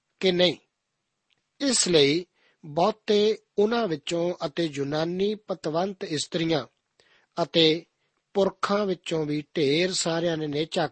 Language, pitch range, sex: Punjabi, 150-185 Hz, male